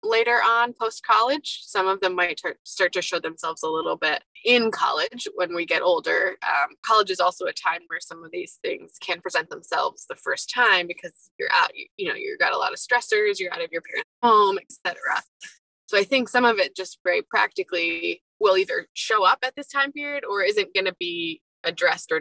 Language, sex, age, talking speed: English, female, 20-39, 215 wpm